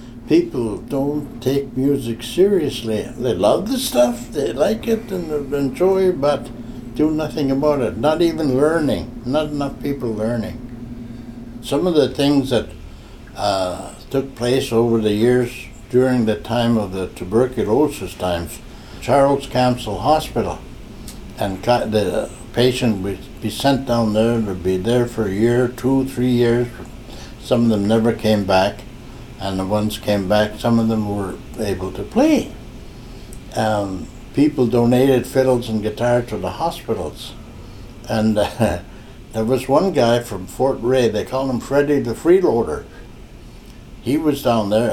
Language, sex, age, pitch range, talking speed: English, male, 60-79, 110-135 Hz, 150 wpm